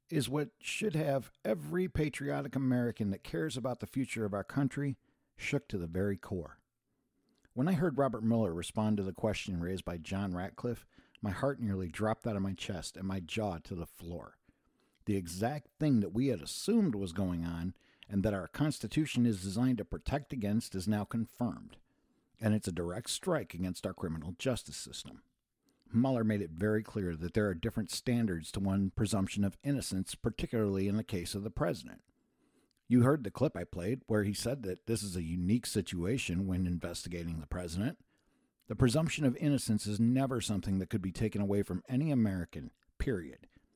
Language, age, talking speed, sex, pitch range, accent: English, 60-79, 185 wpm, male, 95-130 Hz, American